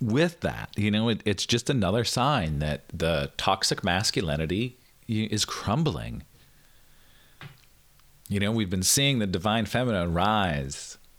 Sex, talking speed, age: male, 125 wpm, 40-59